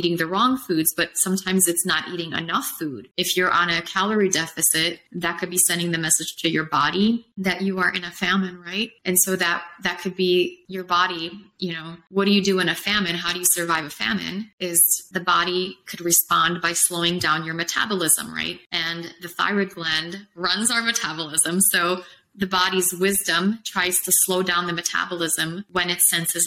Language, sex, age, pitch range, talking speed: English, female, 20-39, 170-185 Hz, 195 wpm